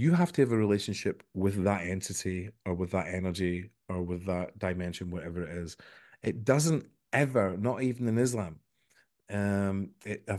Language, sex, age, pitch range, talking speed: English, male, 30-49, 90-110 Hz, 165 wpm